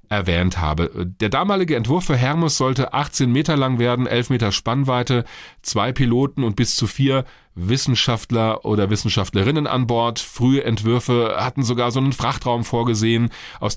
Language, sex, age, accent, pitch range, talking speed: German, male, 40-59, German, 105-130 Hz, 155 wpm